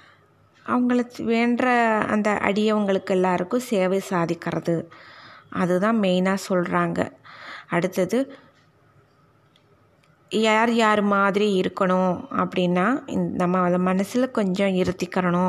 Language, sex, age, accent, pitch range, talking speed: Tamil, female, 20-39, native, 180-210 Hz, 85 wpm